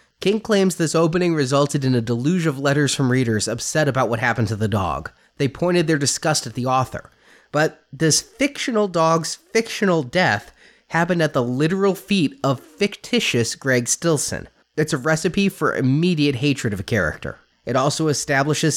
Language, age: English, 30-49